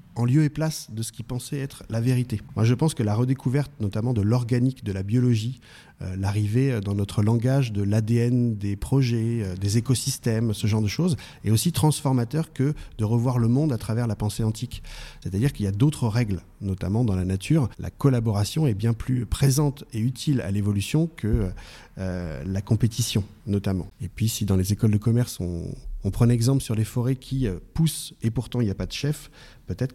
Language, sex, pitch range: French, male, 105-140 Hz